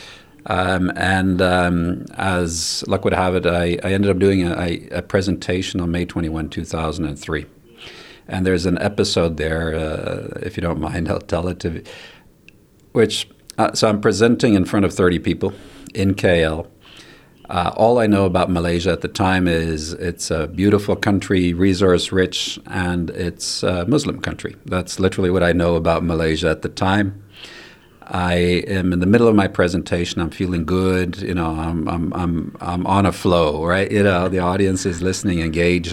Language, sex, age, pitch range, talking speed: English, male, 50-69, 85-95 Hz, 175 wpm